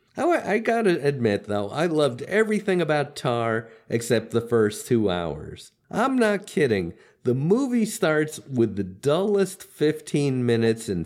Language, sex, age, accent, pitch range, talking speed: English, male, 50-69, American, 110-170 Hz, 140 wpm